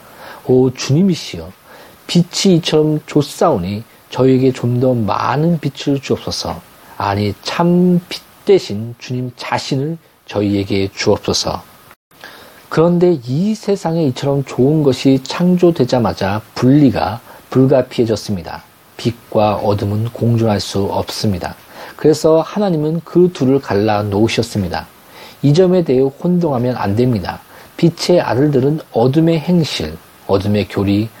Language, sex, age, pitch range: Korean, male, 40-59, 110-150 Hz